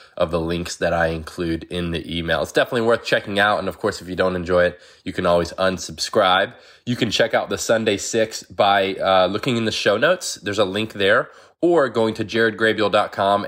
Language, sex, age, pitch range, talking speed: English, male, 20-39, 95-110 Hz, 215 wpm